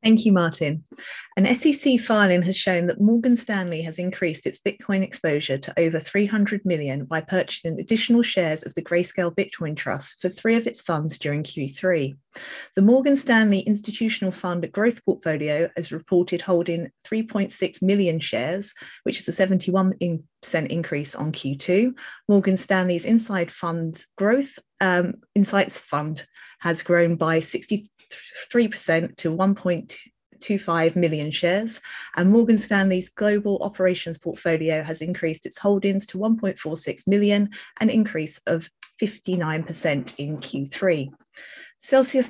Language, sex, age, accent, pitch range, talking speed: English, female, 30-49, British, 165-210 Hz, 130 wpm